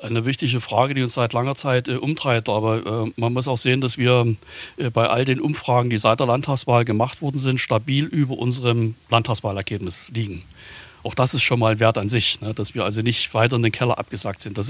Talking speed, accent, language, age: 225 wpm, German, German, 60-79